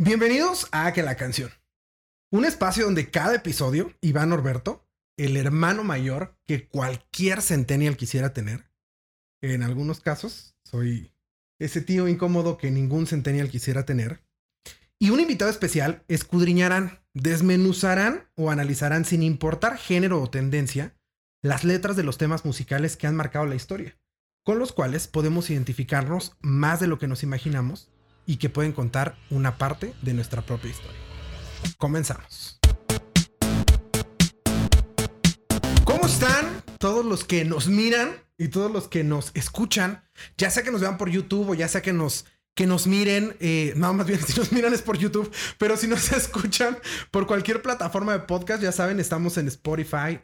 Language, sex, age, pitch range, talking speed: Spanish, male, 30-49, 135-190 Hz, 155 wpm